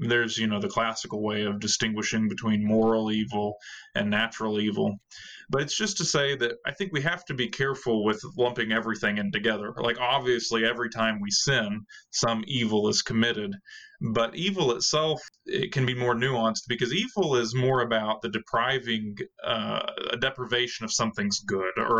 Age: 20-39